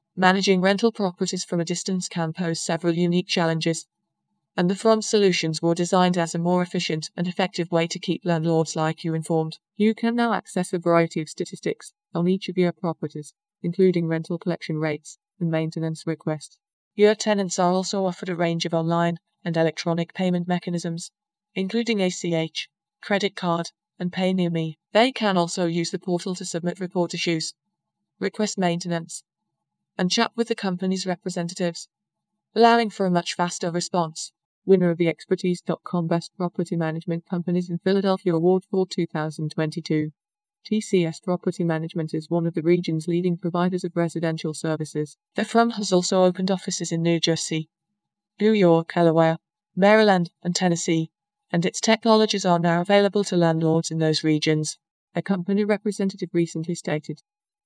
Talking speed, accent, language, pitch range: 160 wpm, British, English, 165-195 Hz